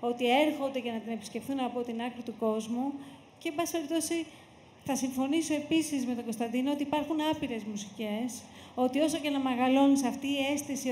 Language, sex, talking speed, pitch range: Greek, female, 175 wpm, 235-285 Hz